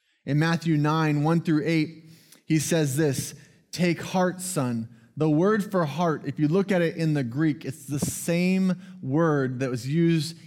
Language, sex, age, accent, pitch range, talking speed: English, male, 20-39, American, 145-180 Hz, 180 wpm